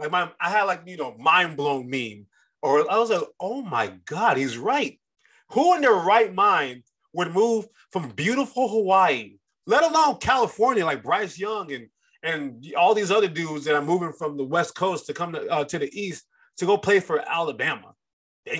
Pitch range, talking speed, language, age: 150-220 Hz, 195 wpm, English, 30-49